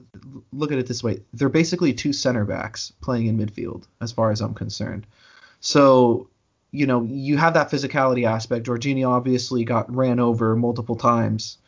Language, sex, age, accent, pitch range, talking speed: English, male, 30-49, American, 120-155 Hz, 170 wpm